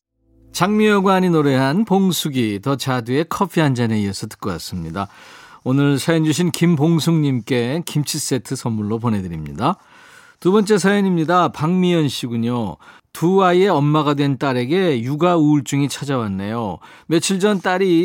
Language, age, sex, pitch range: Korean, 40-59, male, 130-175 Hz